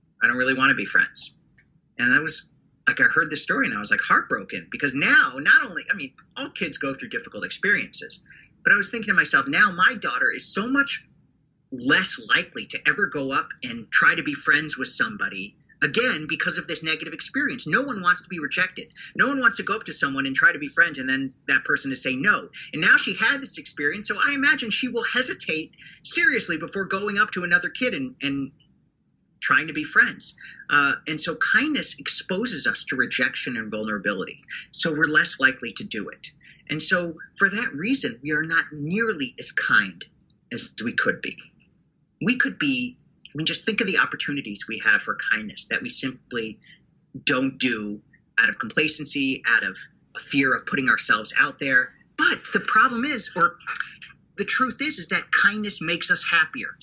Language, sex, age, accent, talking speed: English, male, 40-59, American, 200 wpm